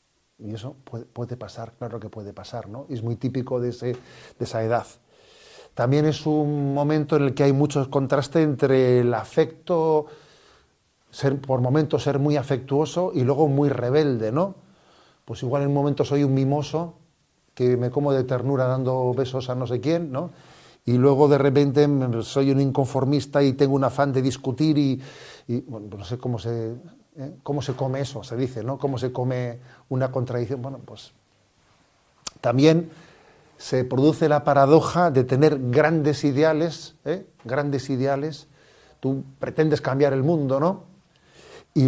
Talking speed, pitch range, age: 165 wpm, 125-145 Hz, 40-59